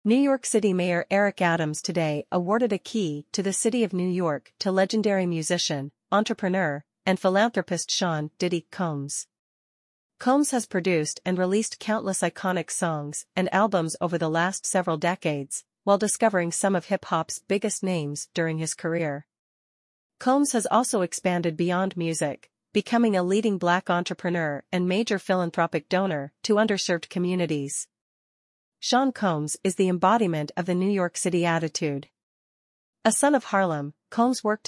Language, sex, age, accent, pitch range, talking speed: English, female, 40-59, American, 165-205 Hz, 150 wpm